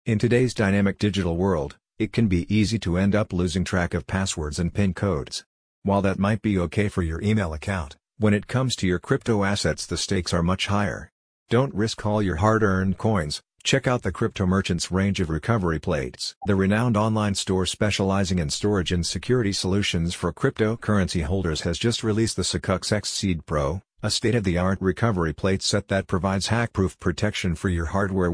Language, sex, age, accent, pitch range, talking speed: English, male, 50-69, American, 90-105 Hz, 185 wpm